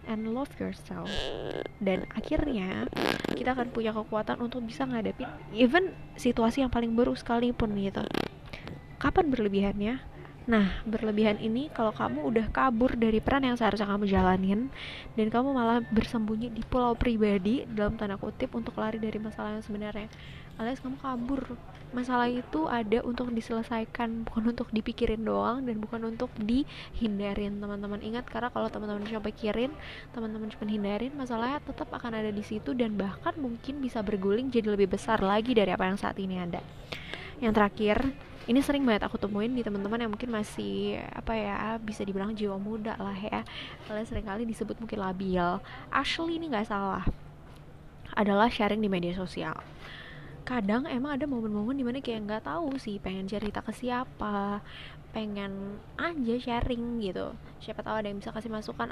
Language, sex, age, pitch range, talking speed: Indonesian, female, 20-39, 210-245 Hz, 160 wpm